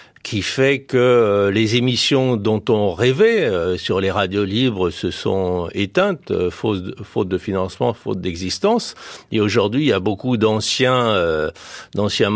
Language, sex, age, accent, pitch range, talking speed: French, male, 60-79, French, 90-120 Hz, 135 wpm